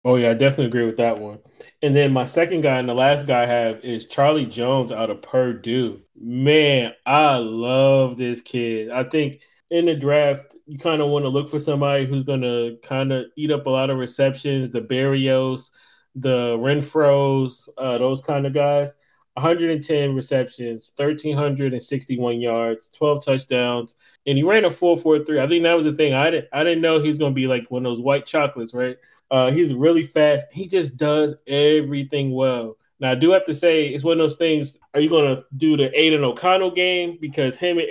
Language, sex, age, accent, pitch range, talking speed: English, male, 20-39, American, 130-150 Hz, 205 wpm